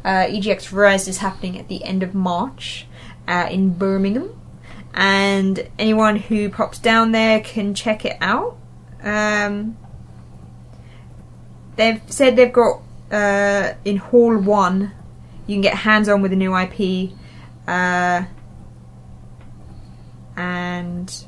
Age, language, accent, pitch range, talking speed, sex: 20-39, English, British, 180-215 Hz, 120 wpm, female